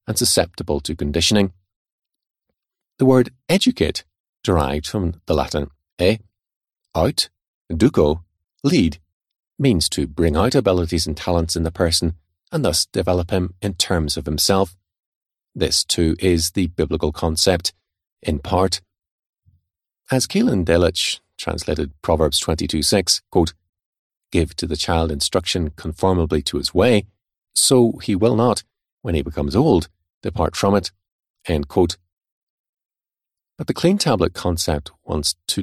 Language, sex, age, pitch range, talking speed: English, male, 40-59, 80-100 Hz, 135 wpm